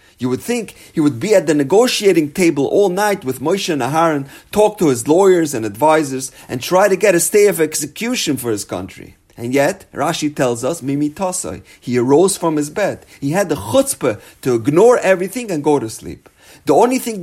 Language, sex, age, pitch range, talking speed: English, male, 30-49, 120-185 Hz, 200 wpm